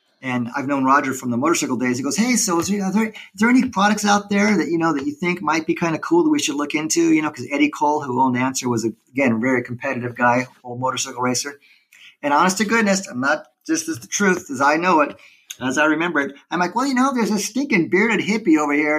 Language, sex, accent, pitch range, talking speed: English, male, American, 140-205 Hz, 265 wpm